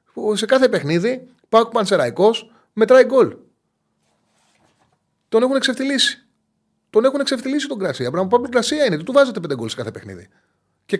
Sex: male